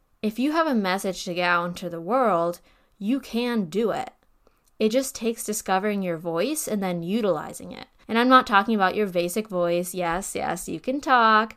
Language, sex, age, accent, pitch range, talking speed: English, female, 10-29, American, 185-245 Hz, 195 wpm